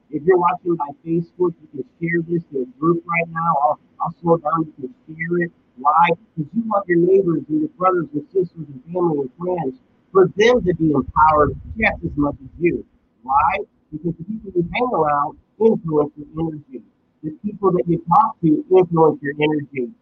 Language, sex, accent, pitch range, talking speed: English, male, American, 145-175 Hz, 200 wpm